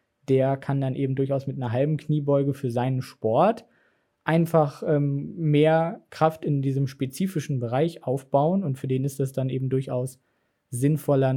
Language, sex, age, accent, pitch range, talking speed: German, male, 20-39, German, 130-155 Hz, 160 wpm